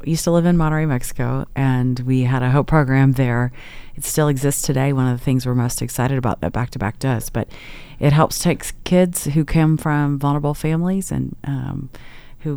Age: 40-59